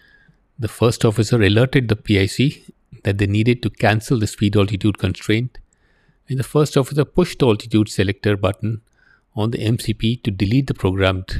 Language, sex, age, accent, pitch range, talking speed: English, male, 50-69, Indian, 105-130 Hz, 165 wpm